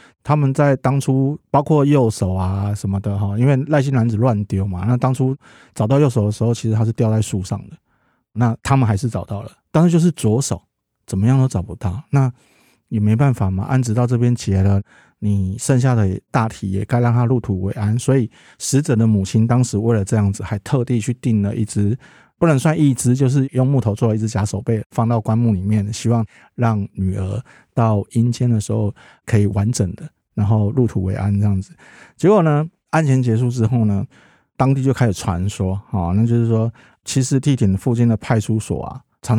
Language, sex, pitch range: Chinese, male, 105-130 Hz